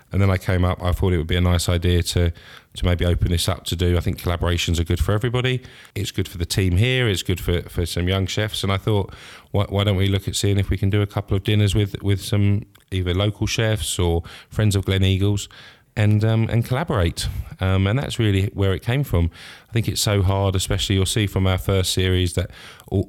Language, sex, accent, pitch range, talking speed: English, male, British, 90-105 Hz, 250 wpm